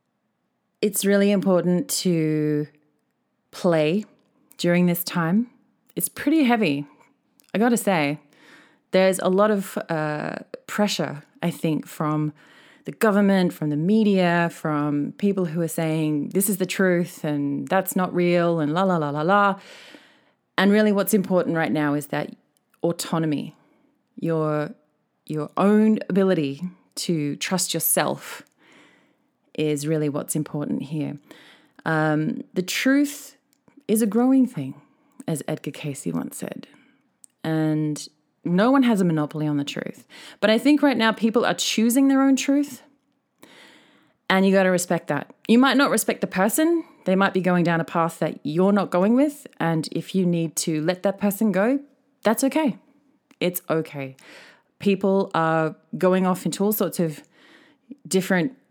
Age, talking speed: 20-39, 150 wpm